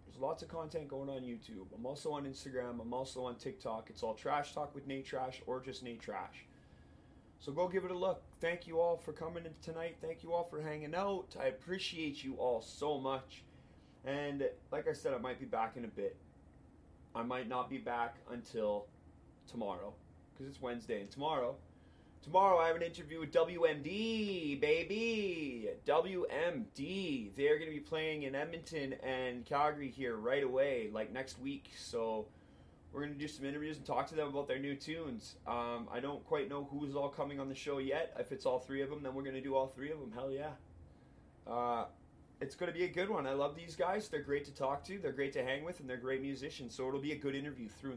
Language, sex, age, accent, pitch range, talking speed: English, male, 30-49, American, 130-170 Hz, 220 wpm